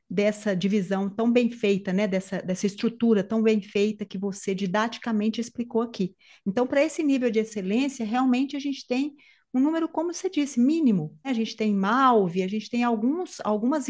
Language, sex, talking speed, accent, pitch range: Portuguese, female, 175 wpm, Brazilian, 195-240 Hz